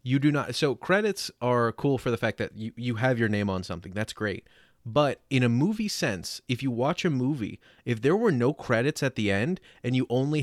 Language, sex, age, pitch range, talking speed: English, male, 30-49, 110-135 Hz, 235 wpm